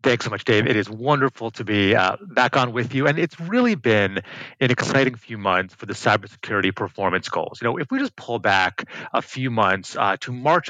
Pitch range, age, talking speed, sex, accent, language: 110-140 Hz, 30-49, 225 wpm, male, American, English